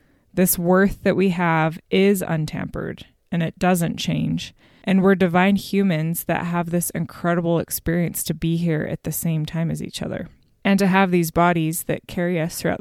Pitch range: 165-190 Hz